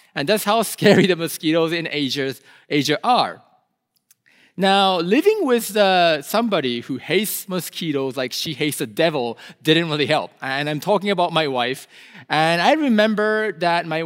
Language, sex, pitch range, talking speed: English, male, 155-225 Hz, 150 wpm